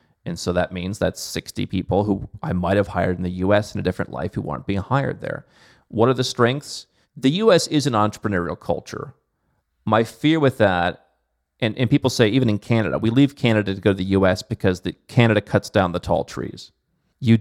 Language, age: English, 30-49